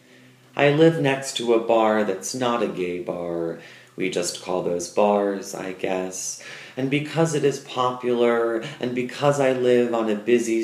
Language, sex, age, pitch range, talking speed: English, male, 30-49, 100-125 Hz, 170 wpm